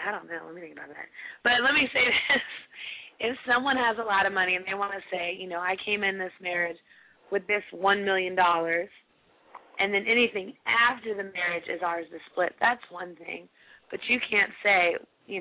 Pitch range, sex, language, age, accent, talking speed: 175-205 Hz, female, English, 20-39, American, 215 wpm